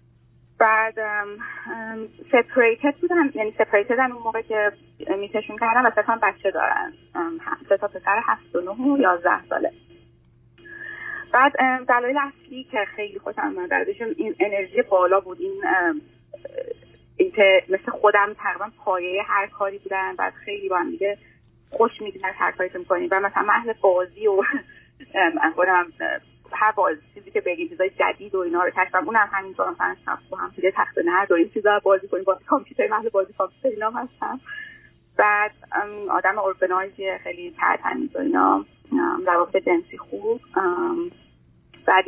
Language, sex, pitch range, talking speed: Persian, female, 190-295 Hz, 135 wpm